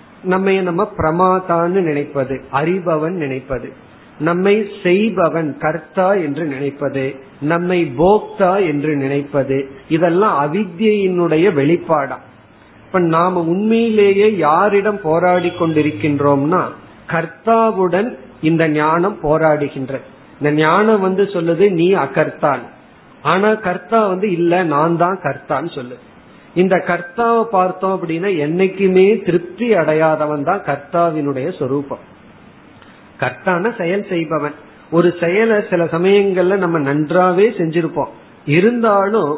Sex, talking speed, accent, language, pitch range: male, 95 wpm, native, Tamil, 155-195 Hz